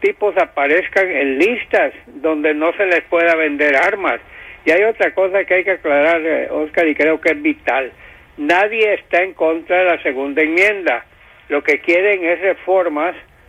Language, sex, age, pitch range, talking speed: English, male, 60-79, 155-185 Hz, 170 wpm